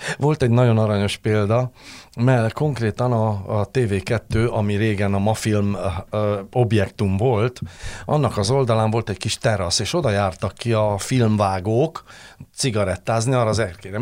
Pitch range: 105-125 Hz